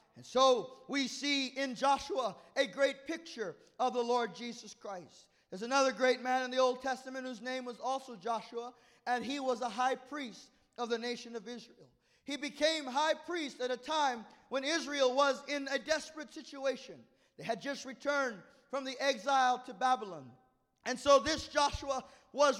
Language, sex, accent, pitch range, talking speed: English, male, American, 255-285 Hz, 175 wpm